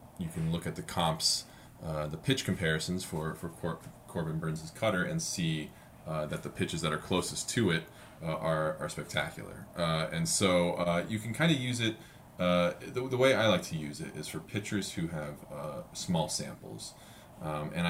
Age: 20-39